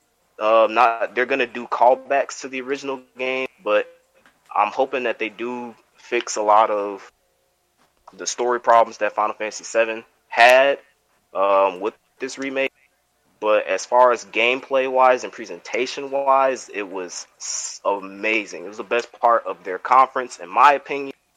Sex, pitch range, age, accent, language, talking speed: male, 110-140 Hz, 20-39, American, English, 150 wpm